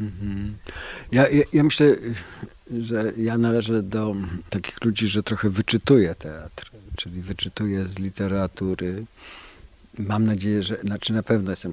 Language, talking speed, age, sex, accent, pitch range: Polish, 130 wpm, 50-69, male, native, 90-110 Hz